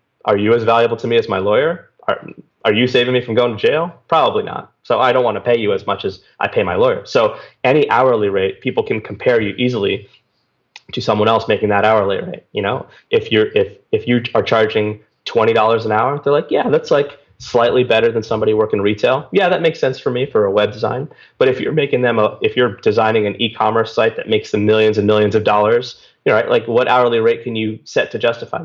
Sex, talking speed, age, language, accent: male, 240 wpm, 20-39, English, American